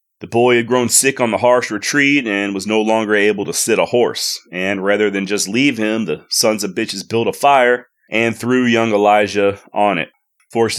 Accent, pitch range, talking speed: American, 105-125 Hz, 210 wpm